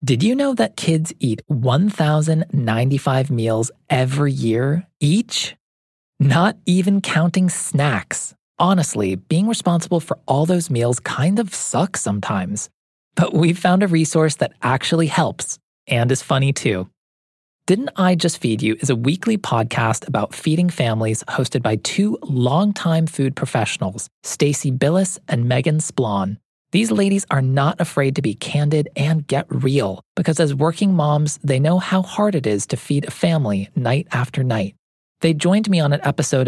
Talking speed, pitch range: 155 wpm, 130-175 Hz